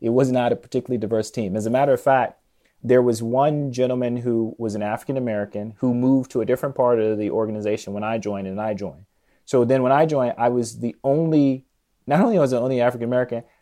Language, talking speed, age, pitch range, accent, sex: English, 225 wpm, 30-49, 115-140 Hz, American, male